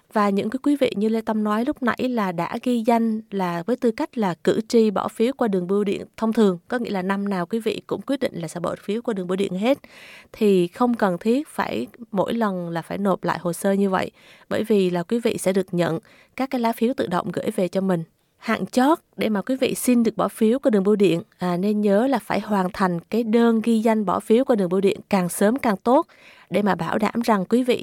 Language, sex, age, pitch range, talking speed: Vietnamese, female, 20-39, 190-235 Hz, 265 wpm